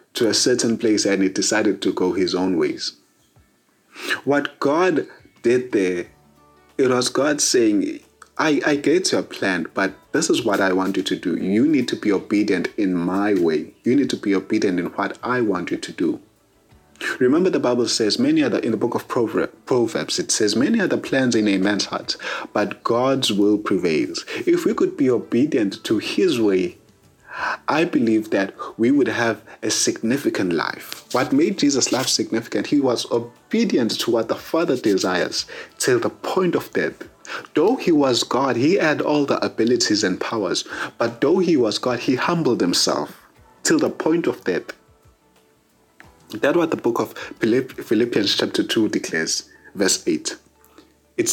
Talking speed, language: 175 wpm, English